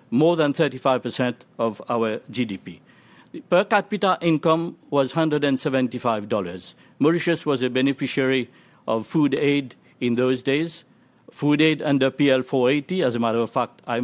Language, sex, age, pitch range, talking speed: English, male, 50-69, 120-155 Hz, 140 wpm